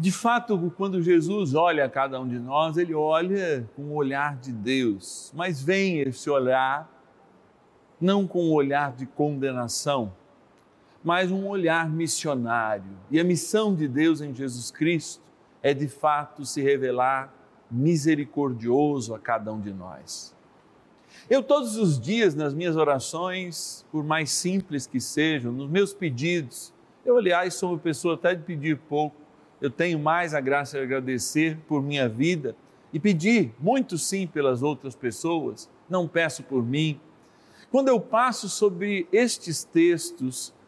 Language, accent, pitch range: Portuguese, Brazilian, 135-185 Hz